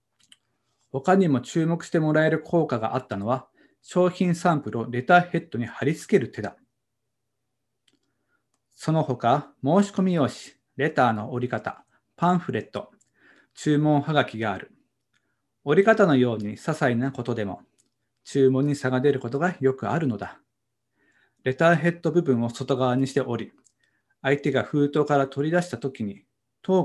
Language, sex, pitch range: Japanese, male, 125-165 Hz